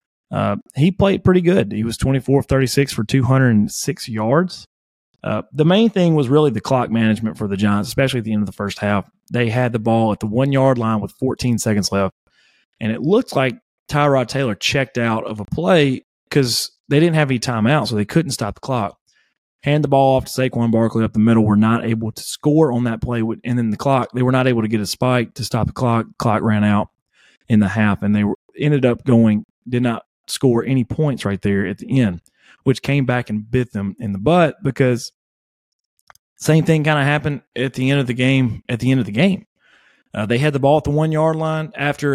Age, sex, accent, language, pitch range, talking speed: 30-49, male, American, English, 110-135 Hz, 230 wpm